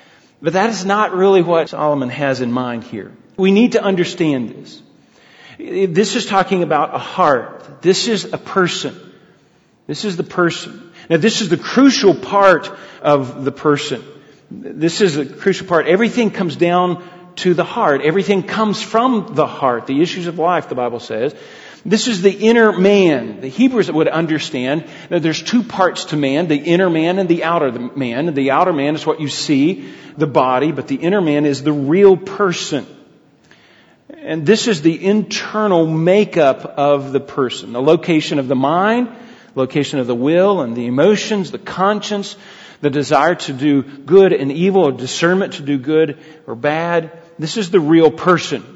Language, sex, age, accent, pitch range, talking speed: English, male, 40-59, American, 145-195 Hz, 175 wpm